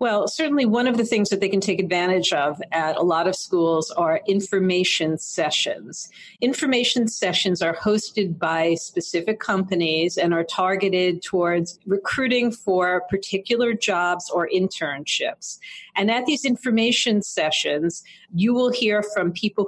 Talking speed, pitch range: 145 wpm, 175-215 Hz